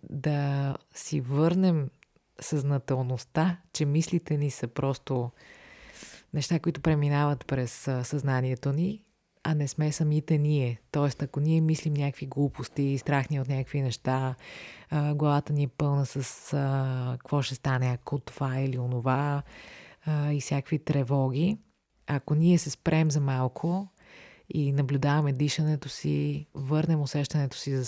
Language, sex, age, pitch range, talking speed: Bulgarian, female, 30-49, 130-150 Hz, 135 wpm